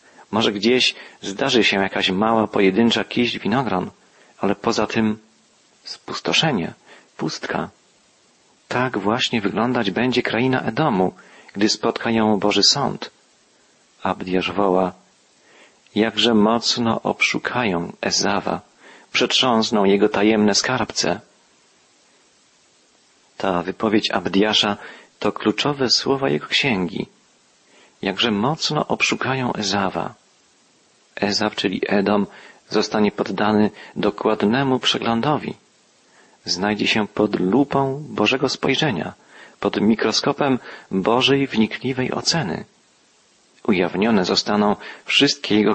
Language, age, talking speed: Polish, 40-59, 90 wpm